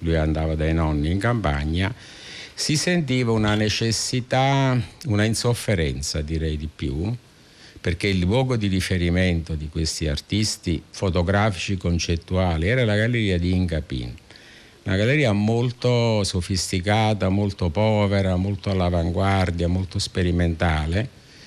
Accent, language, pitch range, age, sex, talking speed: native, Italian, 85-110 Hz, 50-69, male, 110 wpm